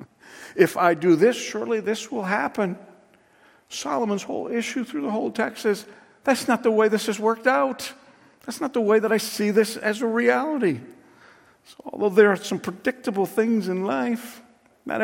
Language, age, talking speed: English, 50-69, 180 wpm